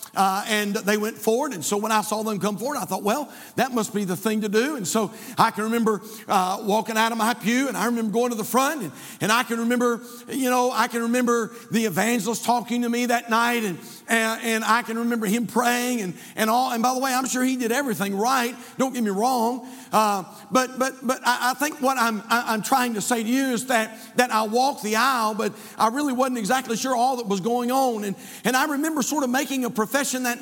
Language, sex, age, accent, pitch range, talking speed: English, male, 50-69, American, 220-260 Hz, 250 wpm